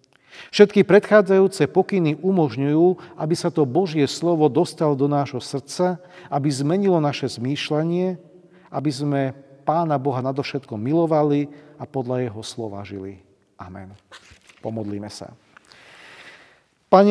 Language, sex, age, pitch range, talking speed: Slovak, male, 40-59, 135-170 Hz, 110 wpm